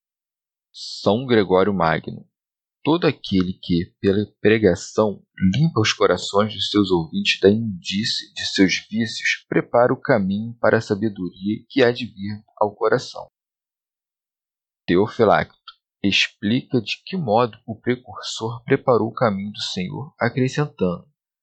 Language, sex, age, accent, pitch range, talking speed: Portuguese, male, 40-59, Brazilian, 100-130 Hz, 125 wpm